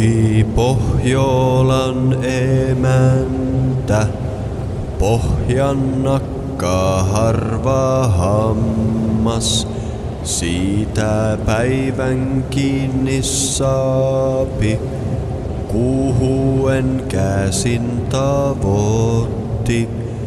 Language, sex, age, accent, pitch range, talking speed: Finnish, male, 30-49, native, 110-135 Hz, 40 wpm